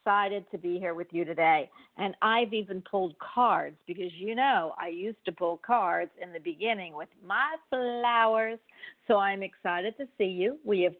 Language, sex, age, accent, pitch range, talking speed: English, female, 50-69, American, 180-240 Hz, 185 wpm